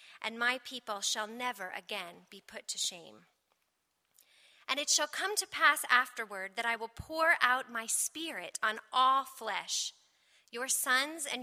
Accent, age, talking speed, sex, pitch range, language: American, 30-49, 160 wpm, female, 220-275 Hz, English